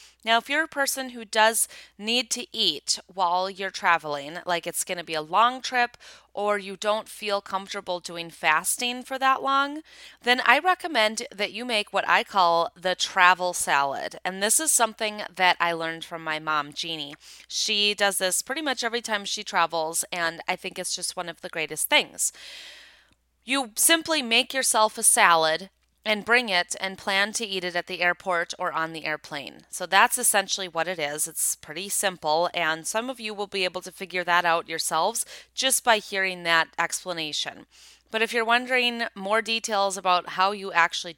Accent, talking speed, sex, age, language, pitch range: American, 190 wpm, female, 20-39, English, 170-220 Hz